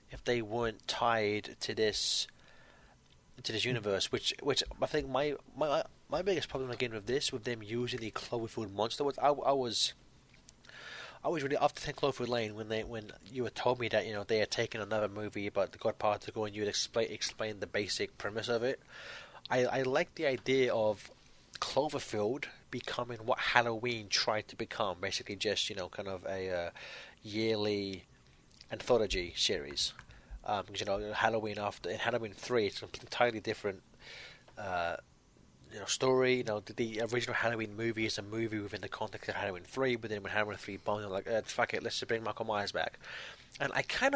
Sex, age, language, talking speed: male, 20-39, English, 195 wpm